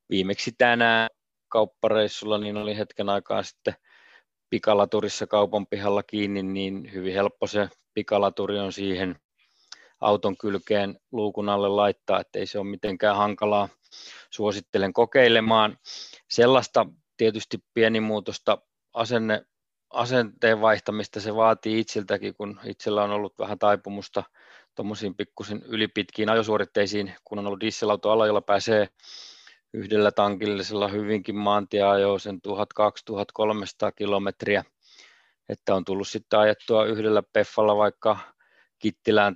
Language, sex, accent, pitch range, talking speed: Finnish, male, native, 100-110 Hz, 115 wpm